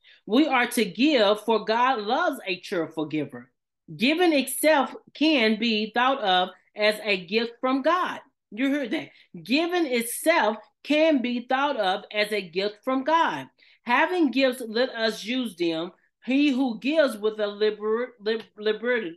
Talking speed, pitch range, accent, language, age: 145 wpm, 210-265 Hz, American, English, 40-59